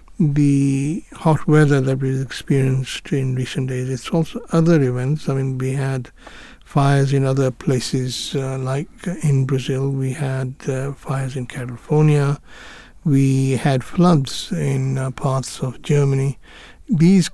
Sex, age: male, 60-79